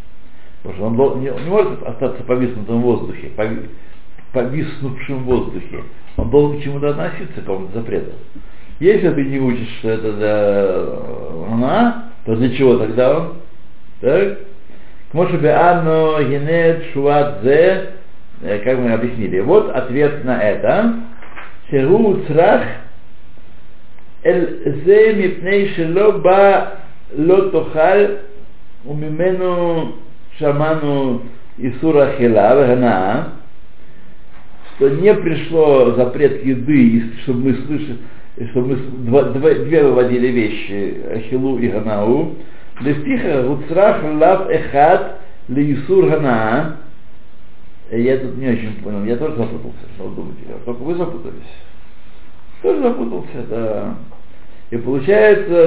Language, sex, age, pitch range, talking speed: Russian, male, 60-79, 120-165 Hz, 95 wpm